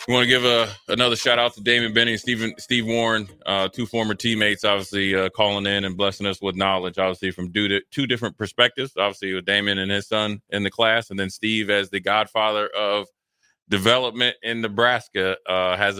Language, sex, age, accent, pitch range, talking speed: English, male, 20-39, American, 95-105 Hz, 205 wpm